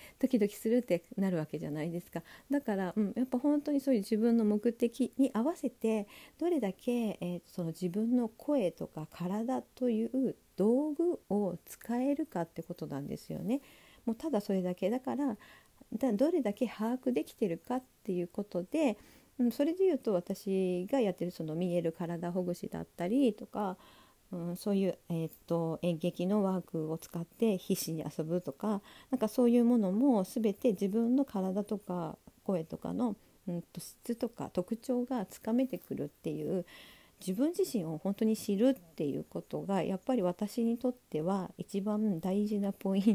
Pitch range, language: 180-250 Hz, Japanese